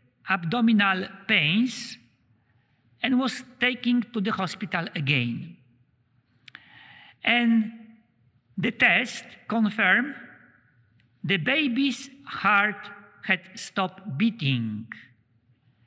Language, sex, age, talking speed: English, male, 50-69, 70 wpm